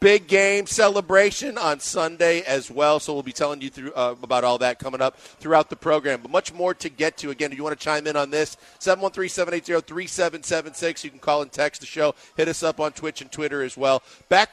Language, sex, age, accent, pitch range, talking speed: English, male, 40-59, American, 135-175 Hz, 225 wpm